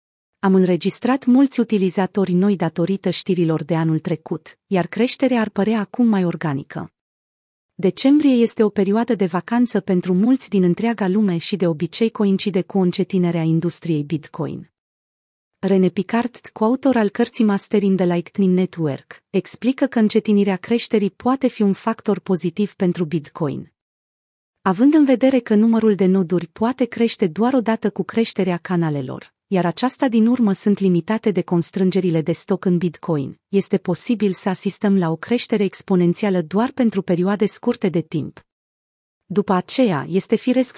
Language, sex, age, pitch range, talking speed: Romanian, female, 30-49, 175-225 Hz, 150 wpm